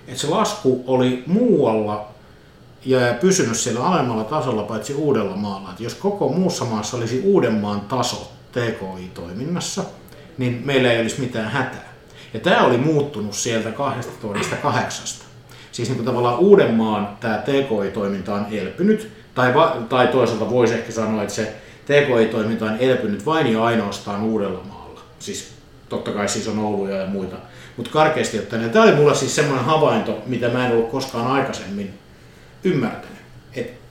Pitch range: 110-130 Hz